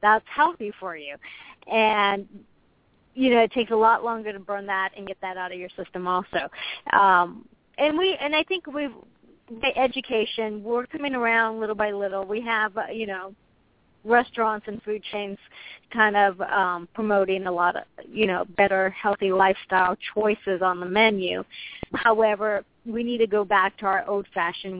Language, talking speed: English, 175 wpm